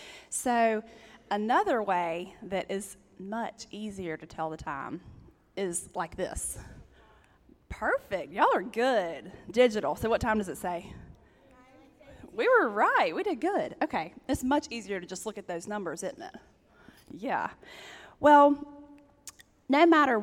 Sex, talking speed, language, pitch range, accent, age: female, 140 wpm, English, 205-270 Hz, American, 20-39